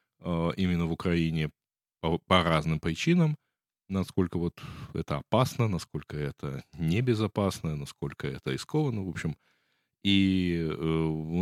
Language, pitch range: Russian, 80-110 Hz